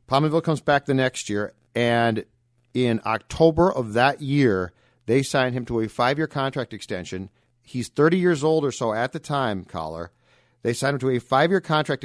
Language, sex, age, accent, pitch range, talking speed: English, male, 40-59, American, 120-150 Hz, 185 wpm